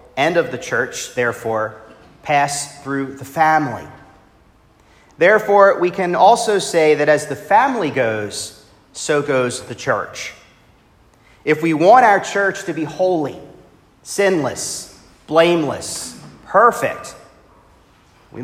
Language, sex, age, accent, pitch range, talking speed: English, male, 40-59, American, 120-180 Hz, 115 wpm